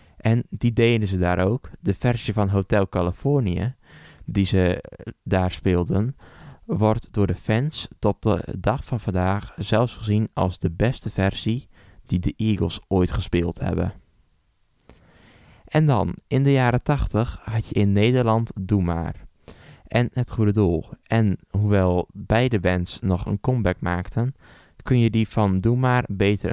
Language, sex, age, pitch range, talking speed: Dutch, male, 20-39, 90-115 Hz, 150 wpm